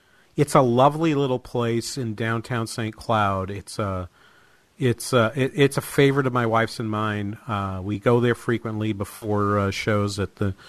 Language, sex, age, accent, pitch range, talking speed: English, male, 50-69, American, 100-130 Hz, 180 wpm